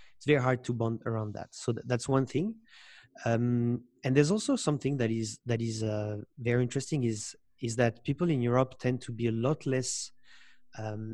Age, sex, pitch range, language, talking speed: 30-49, male, 115-130 Hz, English, 200 wpm